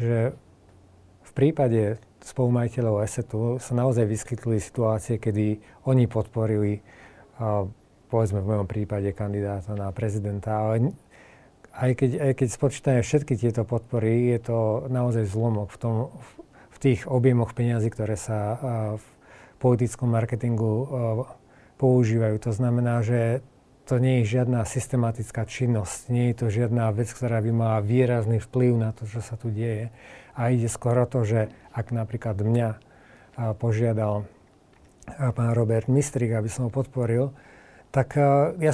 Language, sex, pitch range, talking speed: Slovak, male, 110-130 Hz, 135 wpm